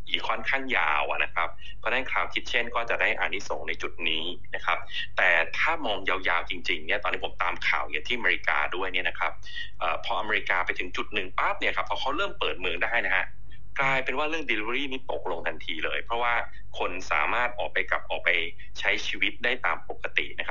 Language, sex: Thai, male